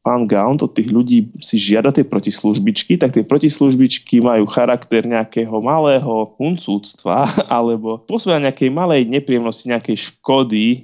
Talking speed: 125 wpm